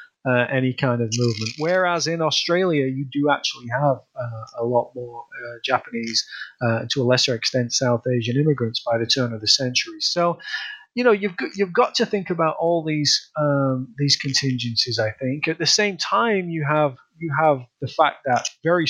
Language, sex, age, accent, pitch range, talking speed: English, male, 30-49, British, 120-155 Hz, 195 wpm